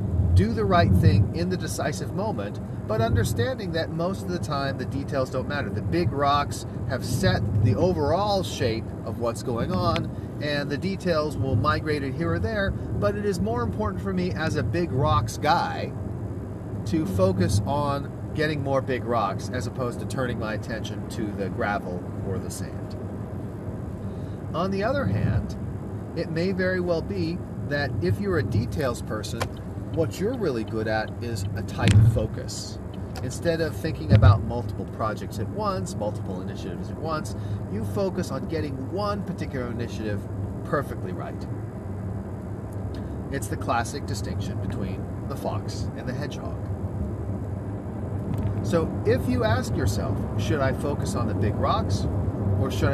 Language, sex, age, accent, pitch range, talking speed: English, male, 40-59, American, 100-115 Hz, 160 wpm